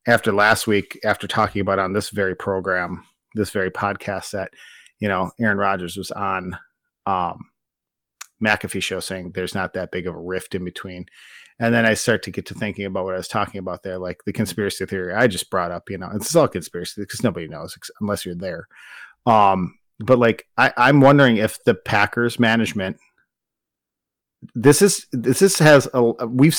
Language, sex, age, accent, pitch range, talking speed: English, male, 30-49, American, 100-120 Hz, 185 wpm